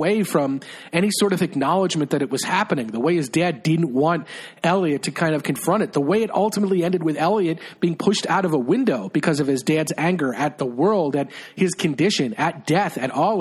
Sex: male